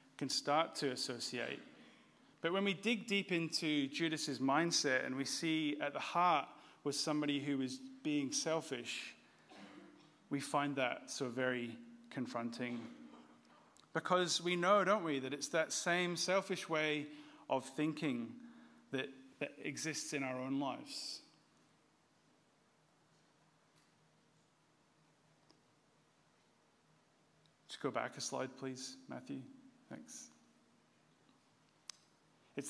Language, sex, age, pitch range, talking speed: English, male, 30-49, 130-170 Hz, 105 wpm